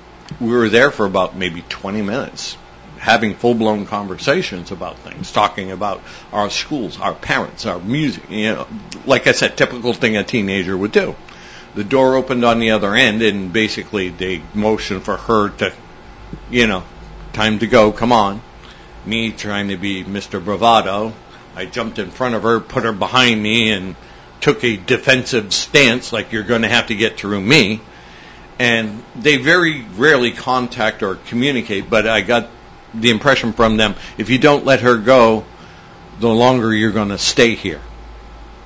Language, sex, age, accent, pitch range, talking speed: English, male, 60-79, American, 100-120 Hz, 170 wpm